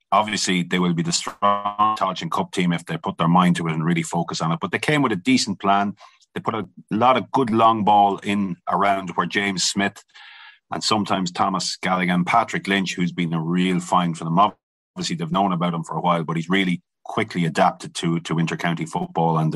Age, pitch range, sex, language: 30-49, 85-100 Hz, male, English